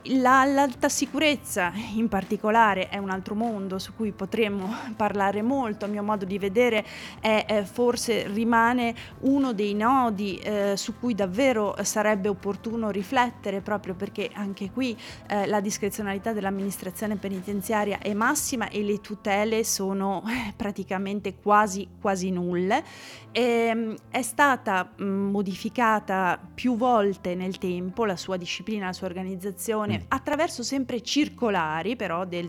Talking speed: 125 wpm